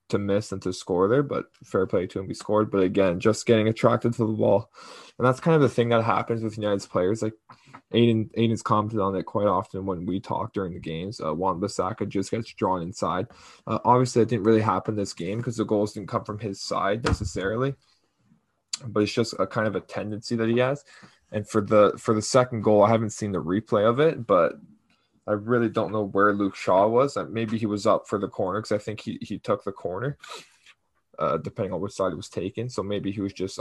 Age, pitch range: 10-29, 100-115 Hz